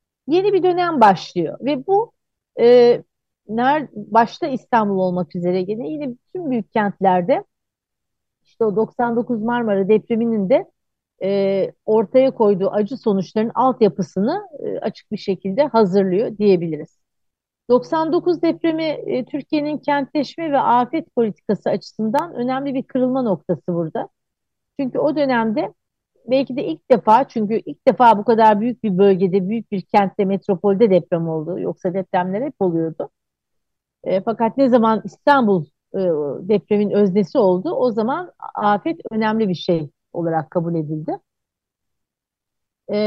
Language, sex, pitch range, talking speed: Turkish, female, 195-270 Hz, 130 wpm